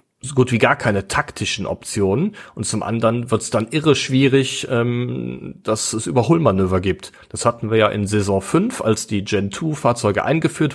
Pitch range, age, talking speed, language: 105-130 Hz, 40-59, 175 wpm, German